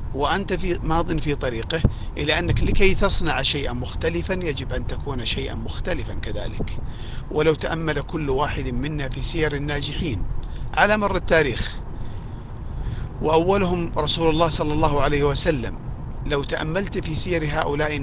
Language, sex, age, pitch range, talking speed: Arabic, male, 40-59, 125-155 Hz, 135 wpm